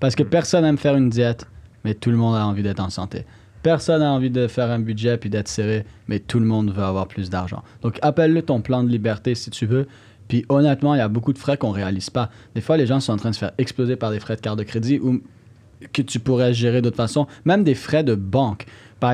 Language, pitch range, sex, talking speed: French, 105-130 Hz, male, 270 wpm